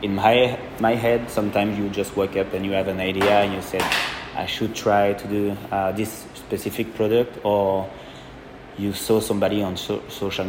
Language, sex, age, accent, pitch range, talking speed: English, male, 20-39, French, 95-110 Hz, 190 wpm